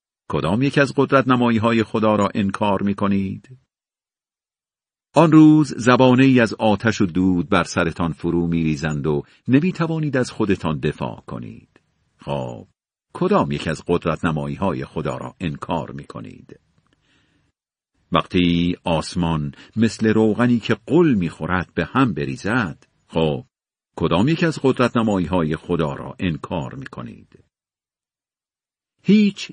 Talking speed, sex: 135 wpm, male